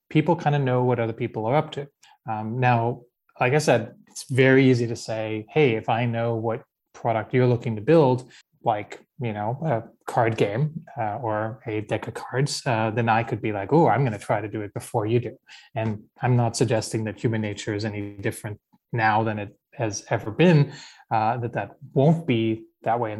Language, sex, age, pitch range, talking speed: English, male, 20-39, 110-130 Hz, 215 wpm